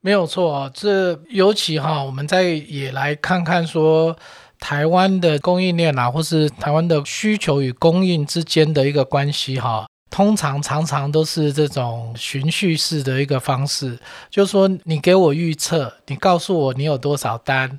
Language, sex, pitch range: Chinese, male, 135-170 Hz